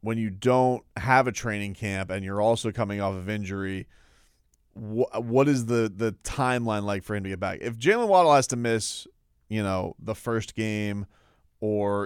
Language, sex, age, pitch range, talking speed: English, male, 30-49, 100-120 Hz, 190 wpm